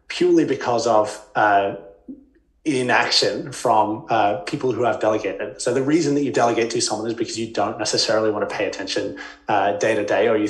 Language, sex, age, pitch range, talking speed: English, male, 20-39, 110-160 Hz, 185 wpm